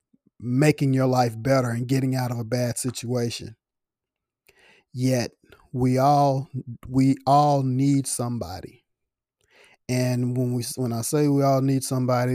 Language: English